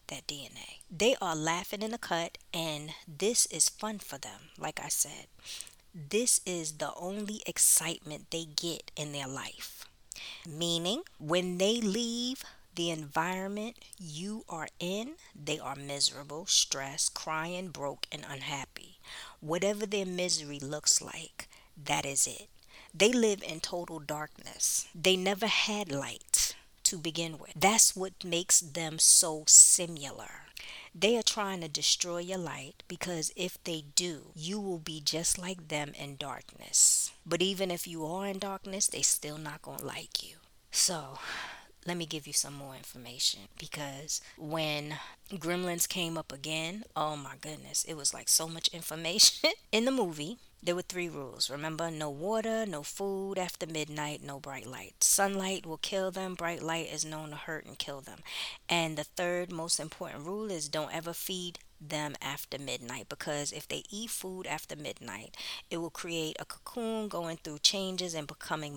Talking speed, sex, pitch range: 160 wpm, female, 155-190 Hz